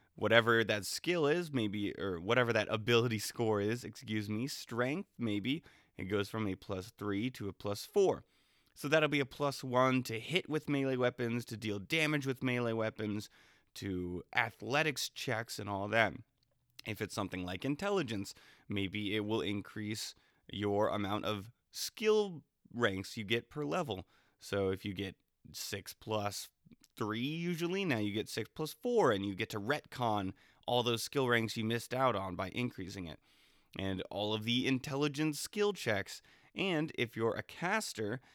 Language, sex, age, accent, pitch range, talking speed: English, male, 20-39, American, 100-130 Hz, 170 wpm